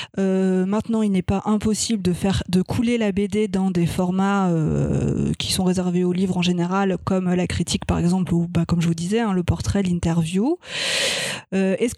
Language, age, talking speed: French, 20-39, 195 wpm